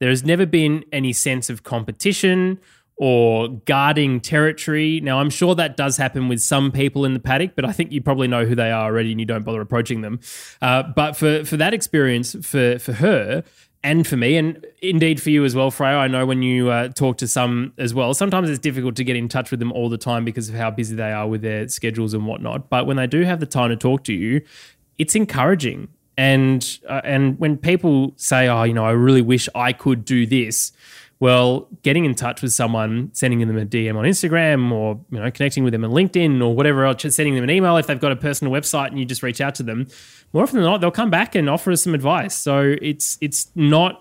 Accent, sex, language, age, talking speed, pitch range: Australian, male, English, 20-39, 240 wpm, 120-150 Hz